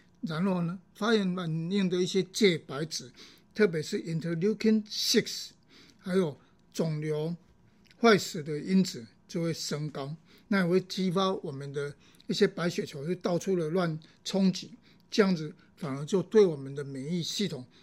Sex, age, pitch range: male, 60-79, 160-205 Hz